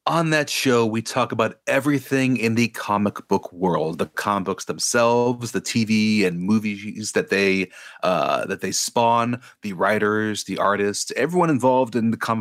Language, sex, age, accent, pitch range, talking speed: English, male, 30-49, American, 100-120 Hz, 170 wpm